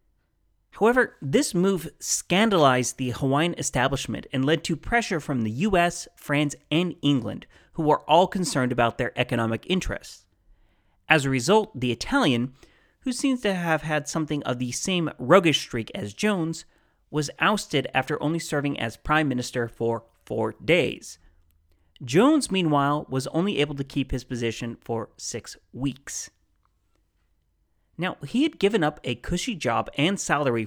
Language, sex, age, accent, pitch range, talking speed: English, male, 30-49, American, 120-165 Hz, 150 wpm